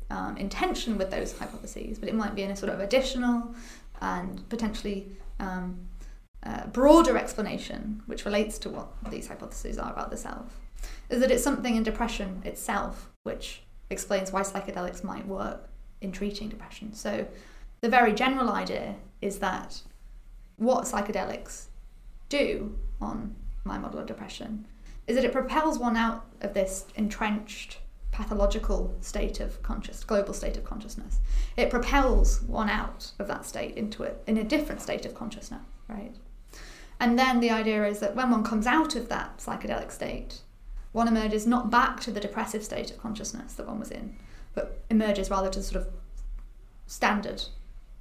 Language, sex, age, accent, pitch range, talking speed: English, female, 20-39, British, 205-245 Hz, 160 wpm